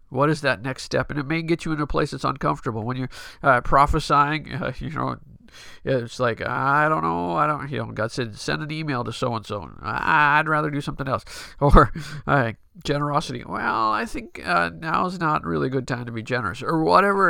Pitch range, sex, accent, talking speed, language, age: 125-150 Hz, male, American, 210 wpm, English, 50-69